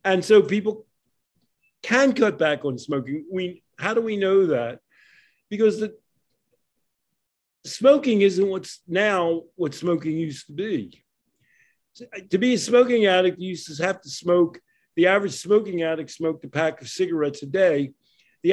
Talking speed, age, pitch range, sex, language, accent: 160 wpm, 50-69, 160-220 Hz, male, English, American